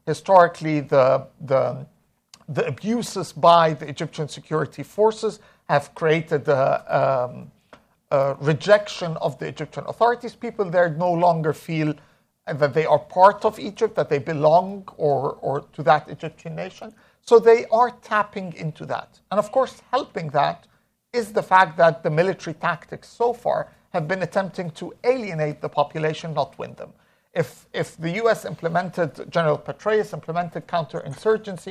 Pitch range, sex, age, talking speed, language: 155-210 Hz, male, 50-69, 150 wpm, English